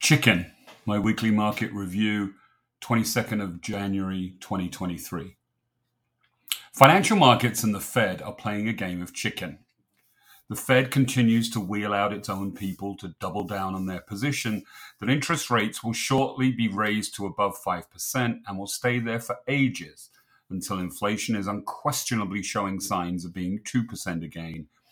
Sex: male